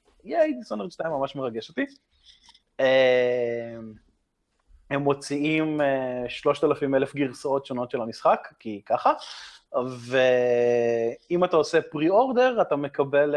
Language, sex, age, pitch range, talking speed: Hebrew, male, 20-39, 125-150 Hz, 100 wpm